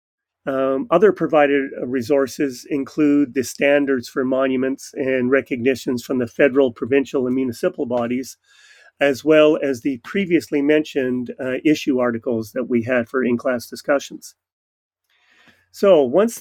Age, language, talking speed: 40-59, English, 130 wpm